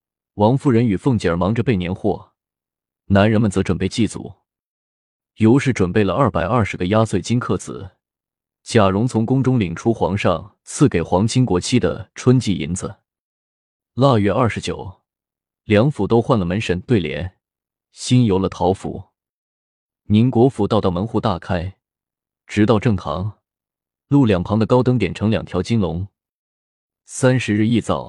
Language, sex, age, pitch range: Chinese, male, 20-39, 90-115 Hz